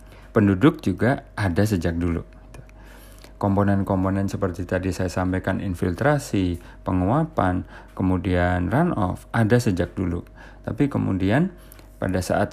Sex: male